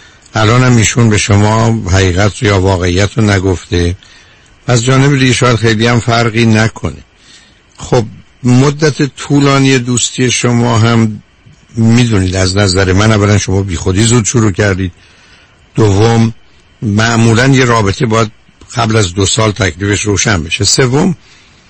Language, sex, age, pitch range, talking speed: Persian, male, 60-79, 100-120 Hz, 130 wpm